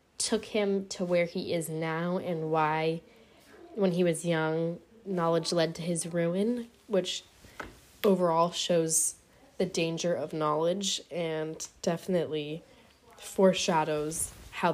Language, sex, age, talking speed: English, female, 10-29, 120 wpm